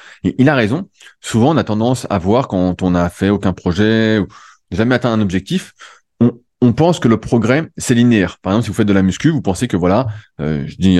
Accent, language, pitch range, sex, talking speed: French, French, 100-130 Hz, male, 240 wpm